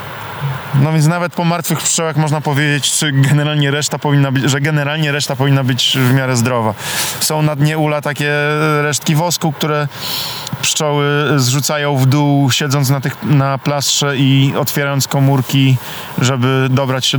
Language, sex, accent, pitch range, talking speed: Polish, male, native, 130-150 Hz, 155 wpm